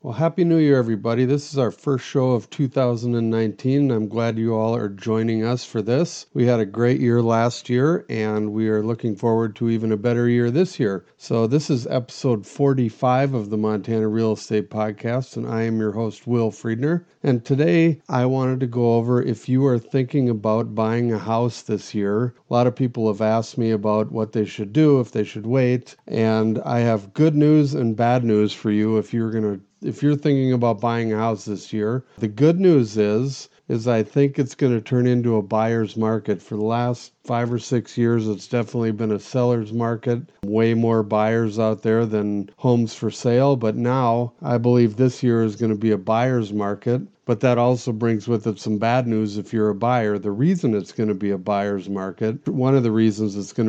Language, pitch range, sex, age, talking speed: English, 110-125 Hz, male, 50-69, 215 wpm